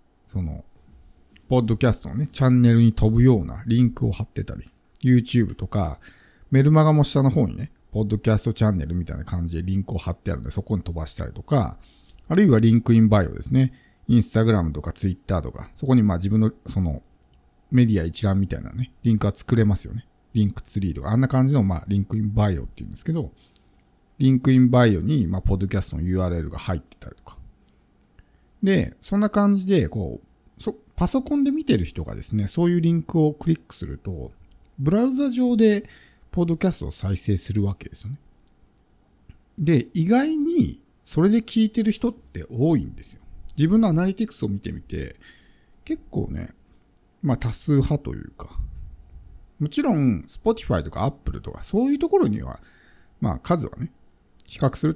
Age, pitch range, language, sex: 50-69, 95-155 Hz, Japanese, male